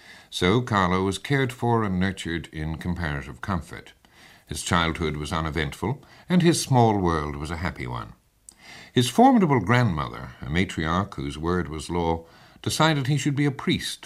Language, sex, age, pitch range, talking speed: English, male, 60-79, 80-100 Hz, 160 wpm